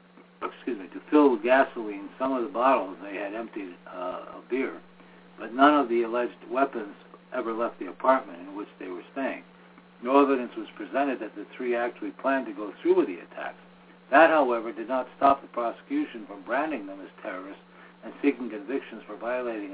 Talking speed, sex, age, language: 195 wpm, male, 60-79, English